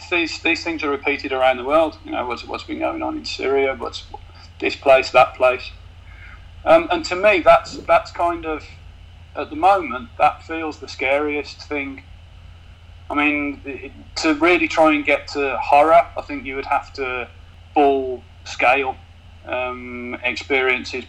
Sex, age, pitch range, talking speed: male, 30-49, 90-145 Hz, 165 wpm